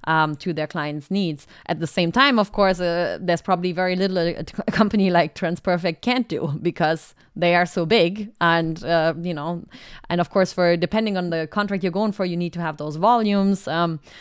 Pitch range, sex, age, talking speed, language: 170-205 Hz, female, 20-39, 210 wpm, English